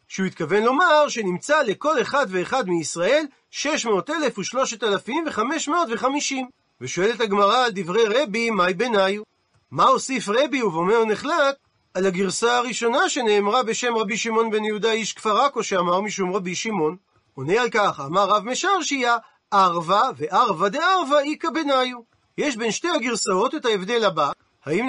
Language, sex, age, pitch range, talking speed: Hebrew, male, 40-59, 205-270 Hz, 155 wpm